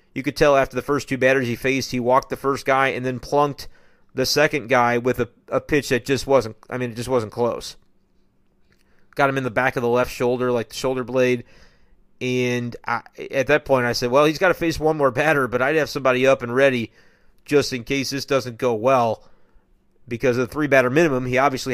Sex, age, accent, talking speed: male, 30-49, American, 230 wpm